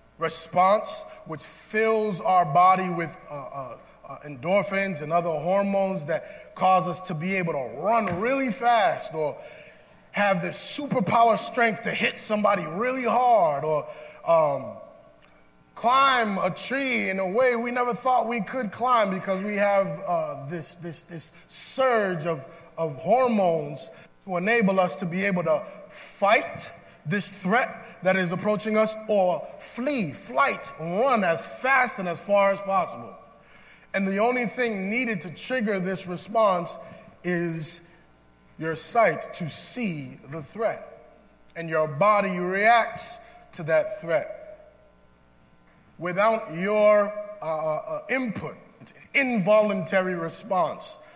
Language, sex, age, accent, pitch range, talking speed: English, male, 20-39, American, 170-230 Hz, 135 wpm